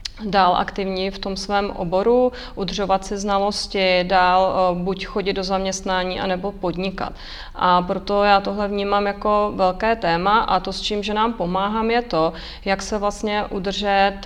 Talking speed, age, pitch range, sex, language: 155 wpm, 30-49, 190-205 Hz, female, Czech